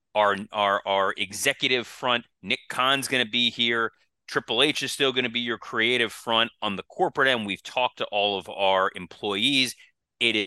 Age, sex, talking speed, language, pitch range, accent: 30-49, male, 190 wpm, English, 100-125 Hz, American